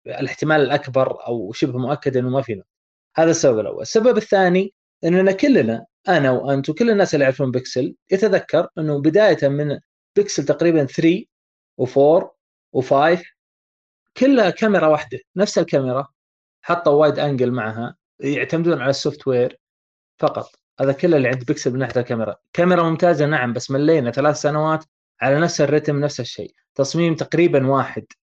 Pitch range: 130-160 Hz